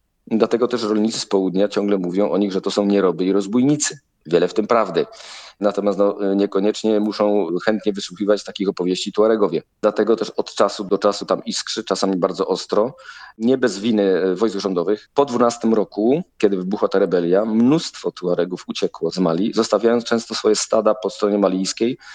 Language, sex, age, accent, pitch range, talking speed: Polish, male, 40-59, native, 100-115 Hz, 170 wpm